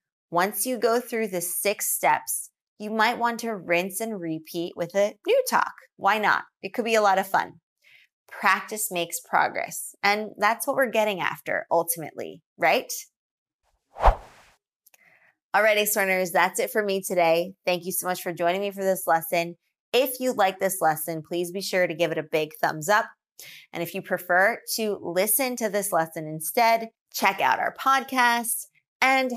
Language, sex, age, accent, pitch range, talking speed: English, female, 20-39, American, 175-220 Hz, 175 wpm